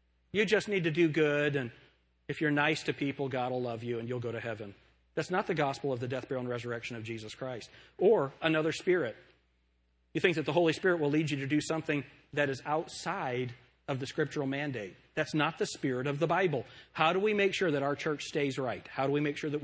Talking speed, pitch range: 240 wpm, 120-155 Hz